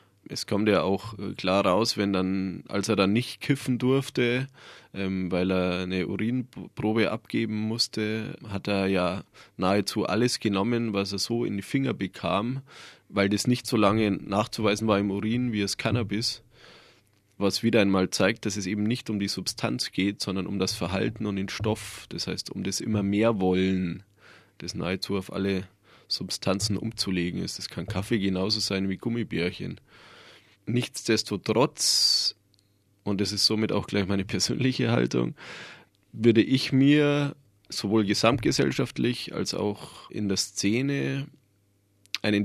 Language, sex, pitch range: German, male, 95-115 Hz